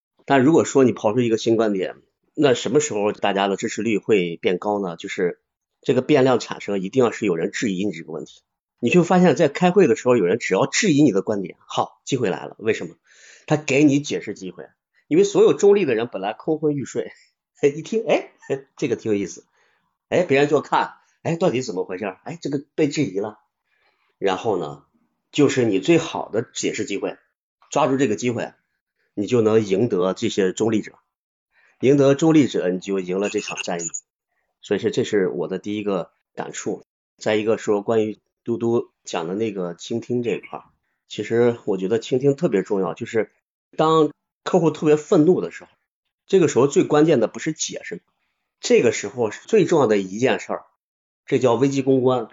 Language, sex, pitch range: Chinese, male, 105-150 Hz